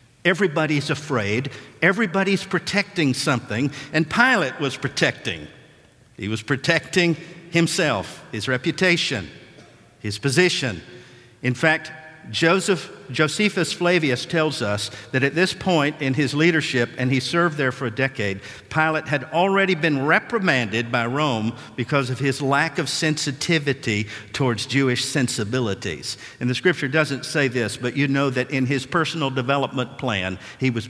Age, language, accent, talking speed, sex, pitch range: 50-69, English, American, 140 wpm, male, 120-165 Hz